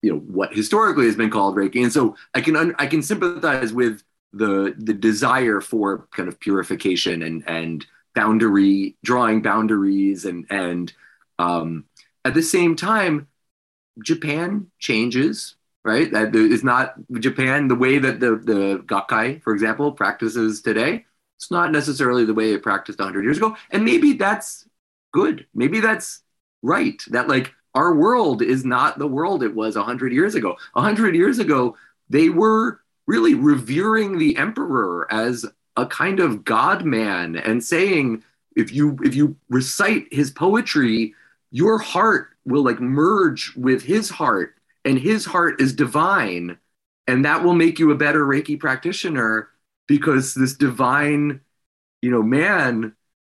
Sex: male